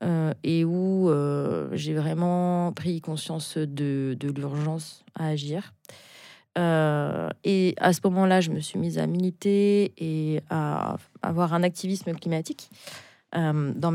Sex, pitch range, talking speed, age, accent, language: female, 160-185 Hz, 140 wpm, 20-39, French, French